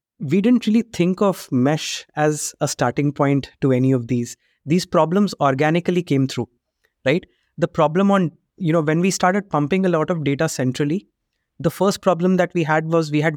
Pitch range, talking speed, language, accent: 140-175 Hz, 195 wpm, English, Indian